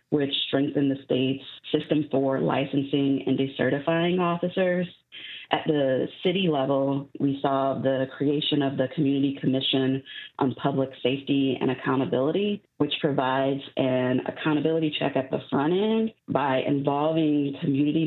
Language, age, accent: English, 30-49, American